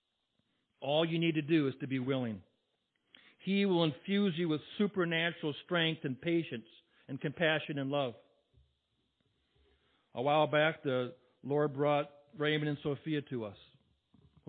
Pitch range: 130-160 Hz